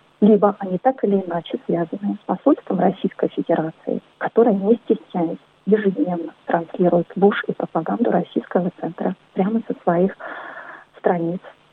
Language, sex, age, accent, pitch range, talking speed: Russian, female, 30-49, native, 180-210 Hz, 125 wpm